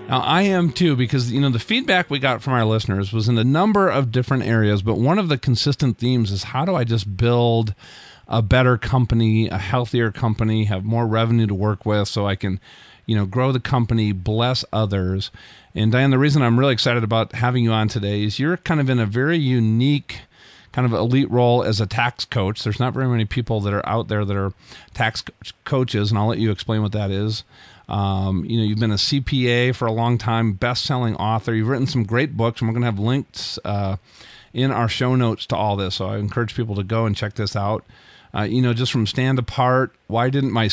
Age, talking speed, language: 40-59, 240 wpm, English